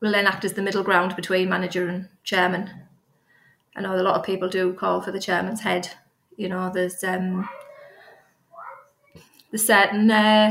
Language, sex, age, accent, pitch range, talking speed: English, female, 20-39, British, 190-215 Hz, 170 wpm